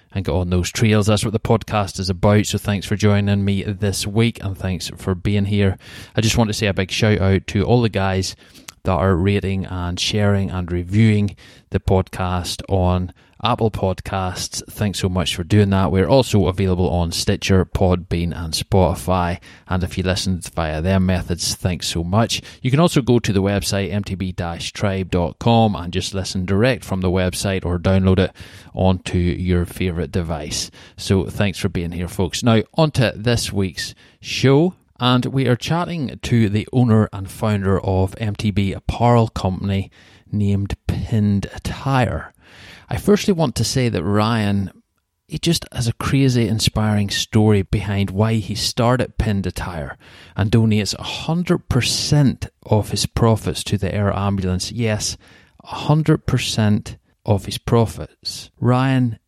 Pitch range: 95-110 Hz